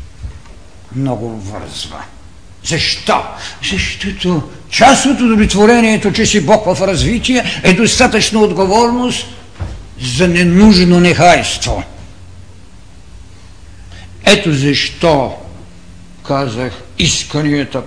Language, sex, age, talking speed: Bulgarian, male, 60-79, 70 wpm